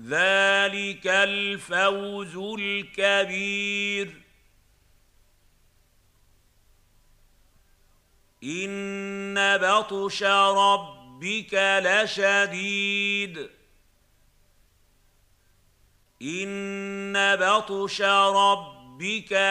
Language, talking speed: Arabic, 30 wpm